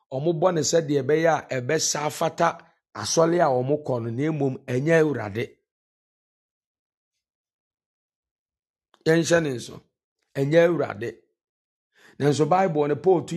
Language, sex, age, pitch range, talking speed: English, male, 50-69, 120-150 Hz, 105 wpm